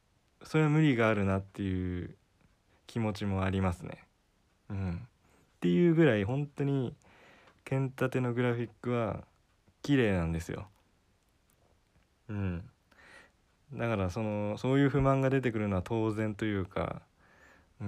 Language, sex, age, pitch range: Japanese, male, 20-39, 95-130 Hz